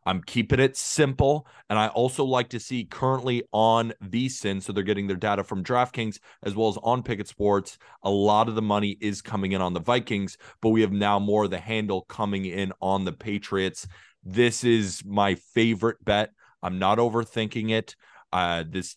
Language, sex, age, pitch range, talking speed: English, male, 30-49, 105-125 Hz, 195 wpm